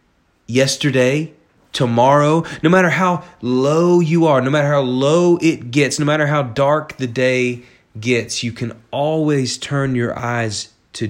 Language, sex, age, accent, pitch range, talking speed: English, male, 30-49, American, 115-155 Hz, 150 wpm